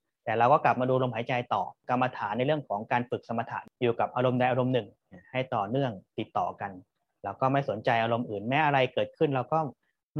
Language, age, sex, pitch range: Thai, 30-49, male, 110-130 Hz